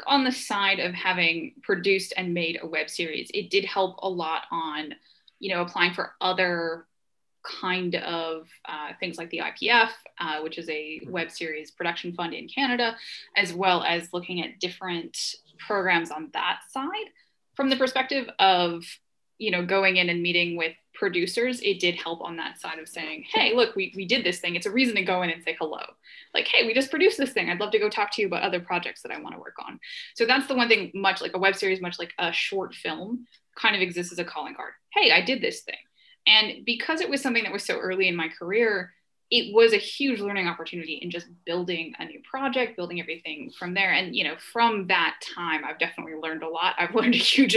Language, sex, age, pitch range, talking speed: English, female, 10-29, 175-245 Hz, 225 wpm